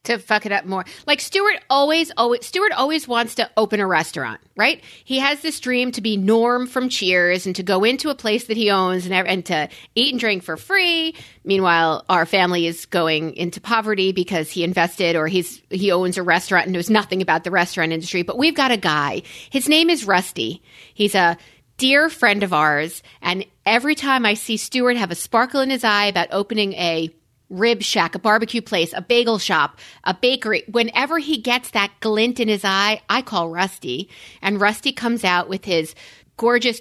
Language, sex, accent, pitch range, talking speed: English, female, American, 180-245 Hz, 200 wpm